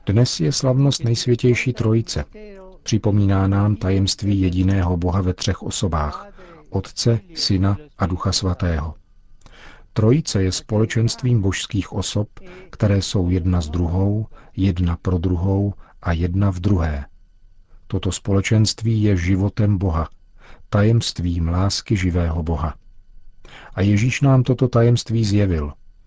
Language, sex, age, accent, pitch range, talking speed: Czech, male, 40-59, native, 90-110 Hz, 115 wpm